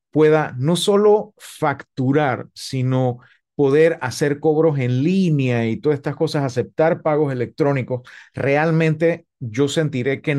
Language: Spanish